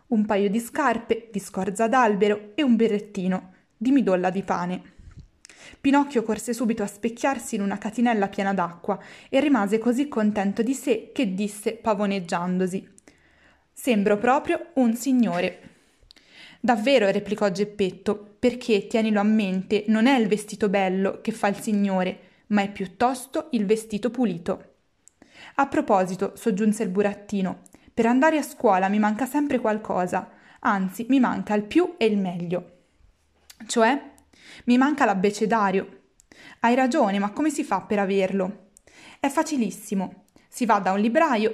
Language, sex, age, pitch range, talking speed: Italian, female, 20-39, 200-245 Hz, 145 wpm